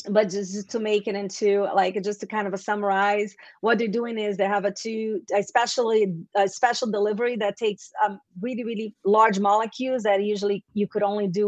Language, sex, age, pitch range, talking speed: English, female, 30-49, 190-220 Hz, 200 wpm